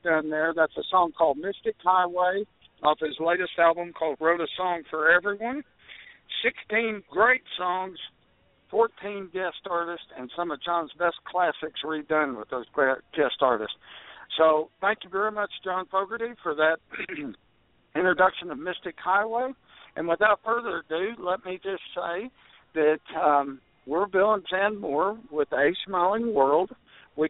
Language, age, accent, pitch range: English, 60-79, American, 145-185 Hz